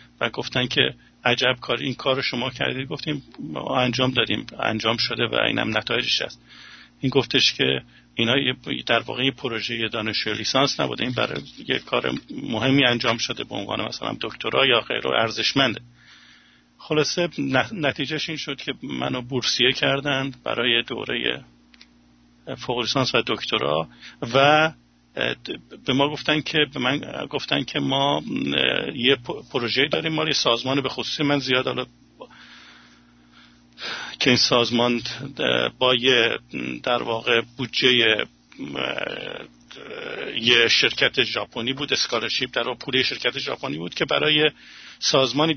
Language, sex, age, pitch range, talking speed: English, male, 50-69, 115-140 Hz, 130 wpm